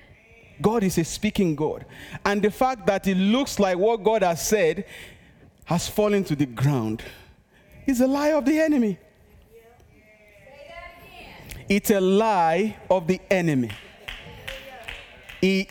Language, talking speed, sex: English, 130 wpm, male